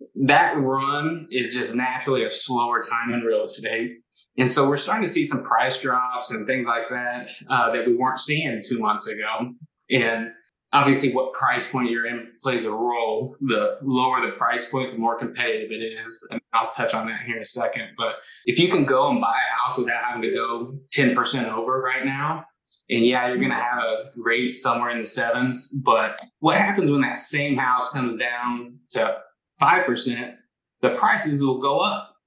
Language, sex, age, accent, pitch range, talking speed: English, male, 20-39, American, 120-135 Hz, 200 wpm